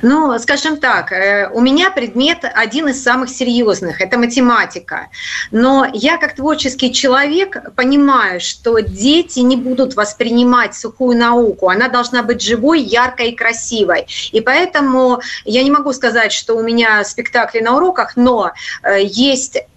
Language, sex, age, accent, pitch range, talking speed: Russian, female, 30-49, native, 215-260 Hz, 140 wpm